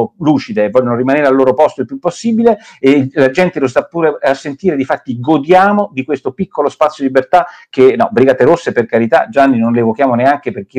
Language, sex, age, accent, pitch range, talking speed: Italian, male, 50-69, native, 130-185 Hz, 205 wpm